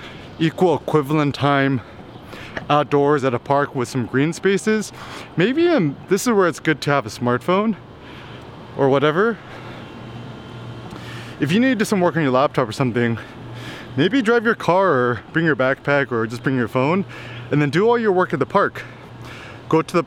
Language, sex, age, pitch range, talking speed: English, male, 20-39, 125-155 Hz, 180 wpm